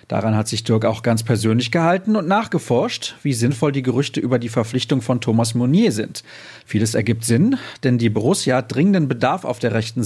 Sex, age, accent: male, 40-59, German